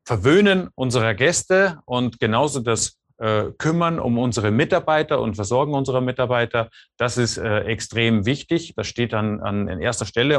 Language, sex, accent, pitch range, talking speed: German, male, German, 110-130 Hz, 155 wpm